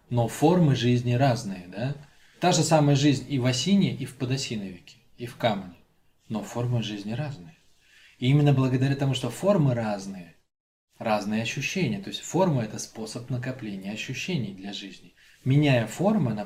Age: 20-39